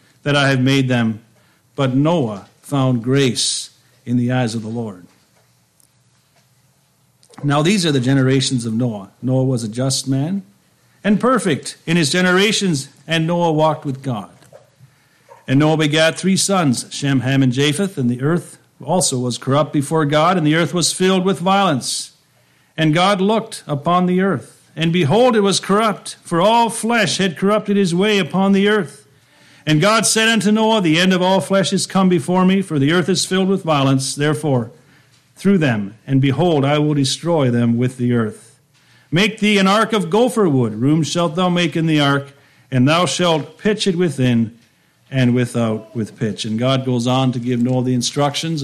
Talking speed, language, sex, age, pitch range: 185 wpm, English, male, 50-69, 130-180 Hz